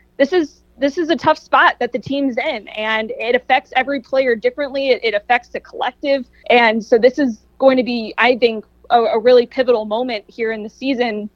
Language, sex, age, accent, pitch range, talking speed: English, female, 20-39, American, 225-265 Hz, 210 wpm